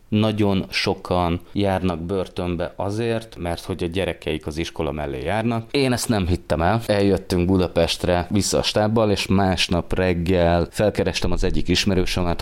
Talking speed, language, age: 145 wpm, Hungarian, 30-49